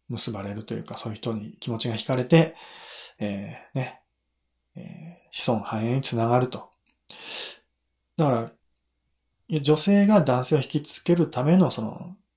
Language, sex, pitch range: Japanese, male, 115-165 Hz